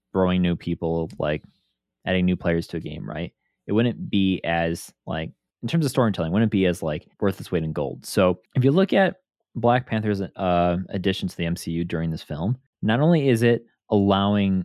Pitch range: 85-110 Hz